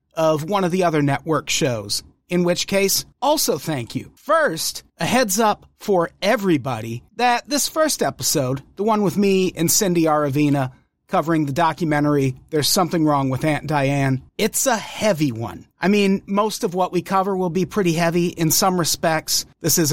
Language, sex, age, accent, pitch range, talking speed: English, male, 40-59, American, 140-205 Hz, 180 wpm